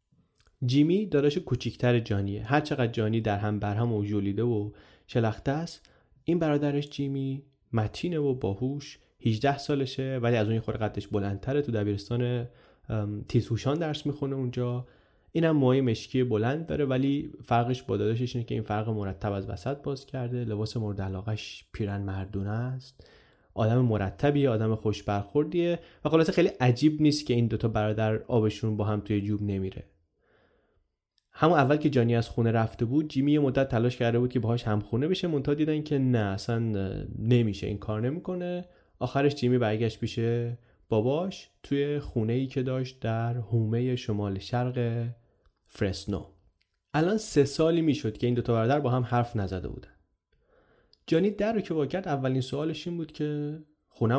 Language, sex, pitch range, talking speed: Persian, male, 110-145 Hz, 165 wpm